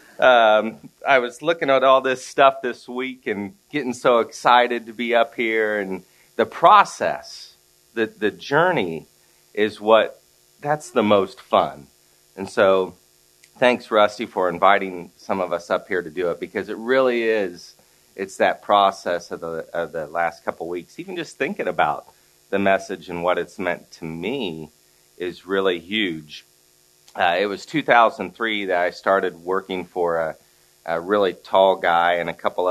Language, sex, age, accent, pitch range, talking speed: English, male, 30-49, American, 75-110 Hz, 170 wpm